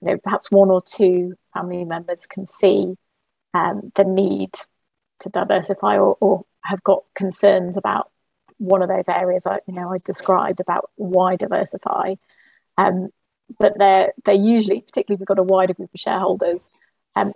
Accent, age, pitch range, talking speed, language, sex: British, 30-49, 185-200 Hz, 165 wpm, English, female